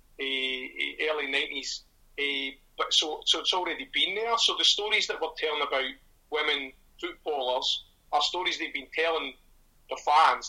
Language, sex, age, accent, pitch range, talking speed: English, male, 40-59, British, 140-190 Hz, 155 wpm